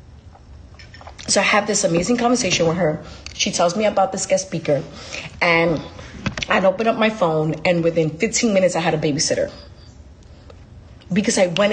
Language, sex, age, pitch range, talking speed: English, female, 30-49, 170-225 Hz, 165 wpm